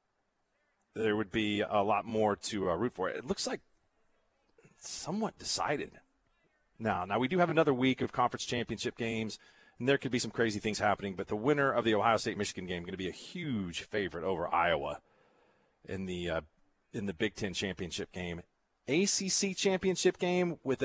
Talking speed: 185 wpm